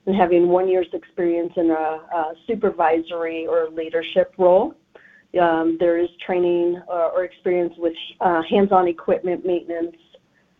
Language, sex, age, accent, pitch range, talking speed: English, female, 40-59, American, 175-210 Hz, 140 wpm